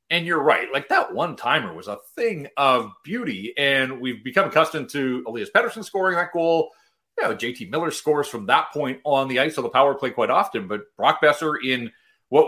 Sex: male